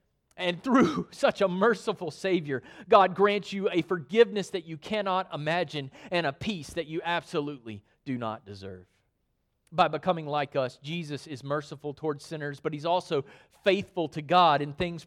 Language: English